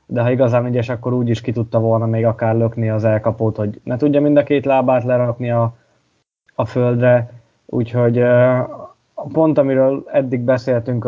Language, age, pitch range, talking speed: Hungarian, 20-39, 115-130 Hz, 160 wpm